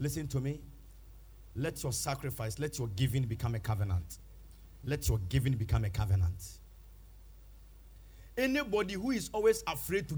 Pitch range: 90-140 Hz